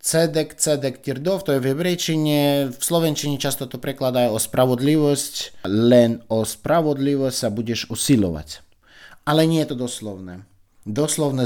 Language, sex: Slovak, male